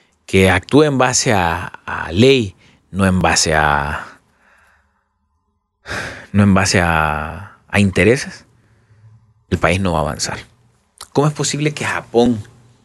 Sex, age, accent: male, 30-49, Mexican